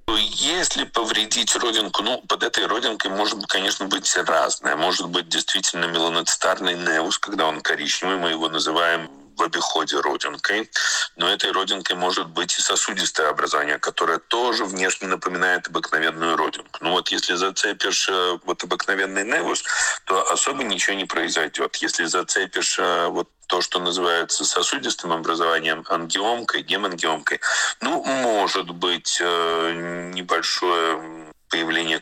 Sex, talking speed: male, 125 wpm